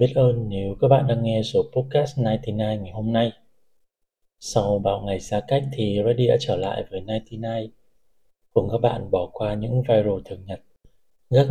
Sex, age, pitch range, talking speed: male, 20-39, 100-130 Hz, 195 wpm